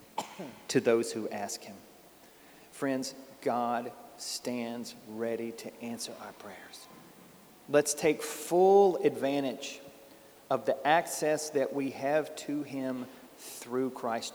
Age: 40-59